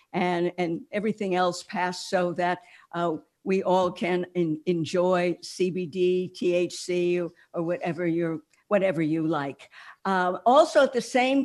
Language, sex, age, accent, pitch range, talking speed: English, female, 60-79, American, 175-230 Hz, 140 wpm